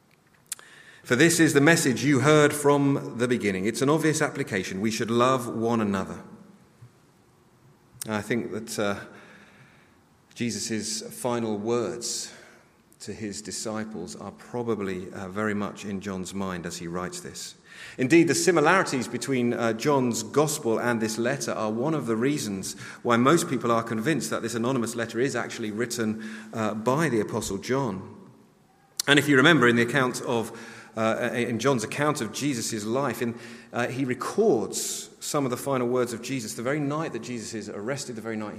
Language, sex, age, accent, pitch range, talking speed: English, male, 40-59, British, 110-140 Hz, 170 wpm